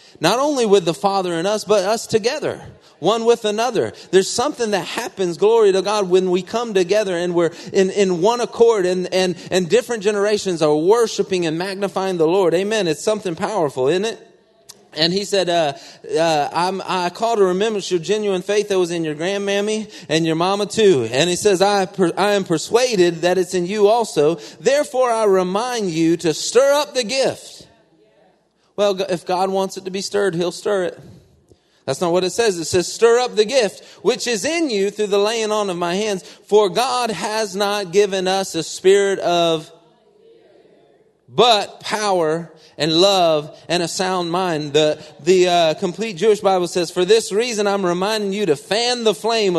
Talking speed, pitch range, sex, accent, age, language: 190 wpm, 180-220 Hz, male, American, 30-49, English